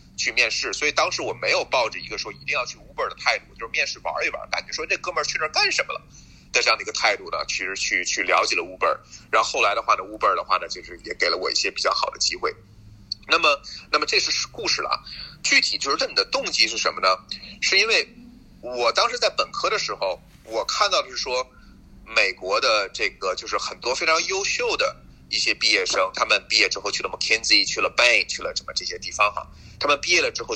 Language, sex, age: Chinese, male, 30-49